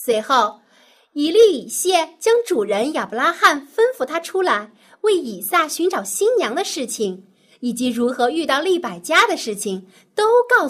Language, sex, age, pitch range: Chinese, female, 30-49, 220-355 Hz